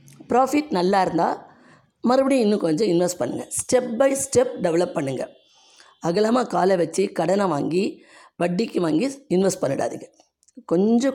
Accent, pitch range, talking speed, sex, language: native, 175-270 Hz, 120 wpm, female, Tamil